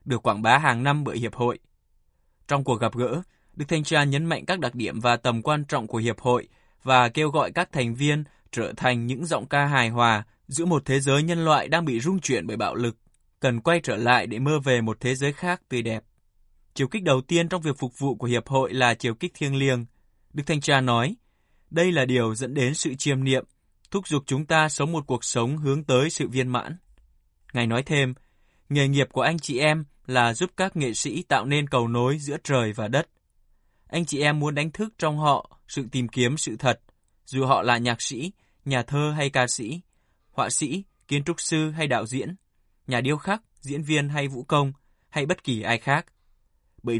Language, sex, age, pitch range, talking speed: Vietnamese, male, 20-39, 125-155 Hz, 220 wpm